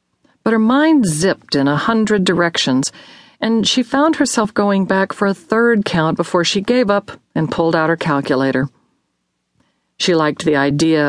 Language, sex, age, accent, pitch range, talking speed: English, female, 50-69, American, 155-220 Hz, 170 wpm